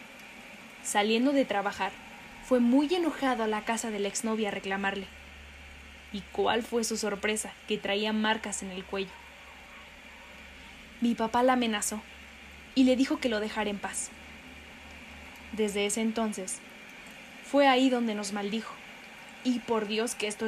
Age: 10-29